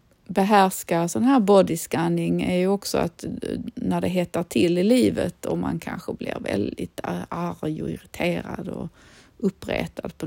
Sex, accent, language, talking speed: female, native, Swedish, 145 wpm